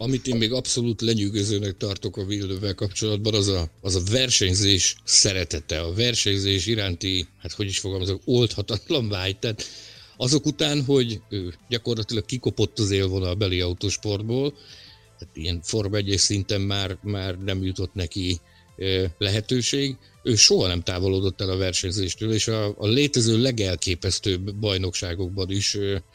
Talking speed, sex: 135 wpm, male